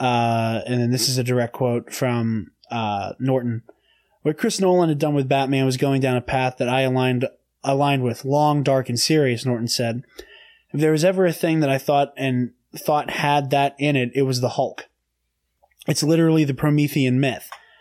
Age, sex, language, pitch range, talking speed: 20-39, male, English, 125-145 Hz, 195 wpm